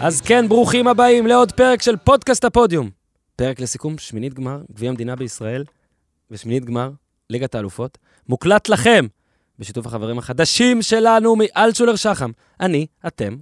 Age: 20-39